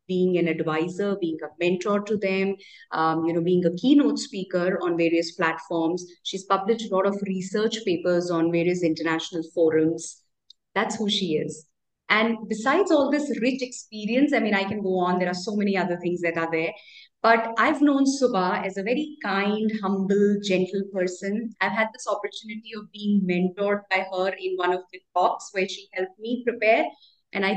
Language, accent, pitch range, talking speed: English, Indian, 180-215 Hz, 185 wpm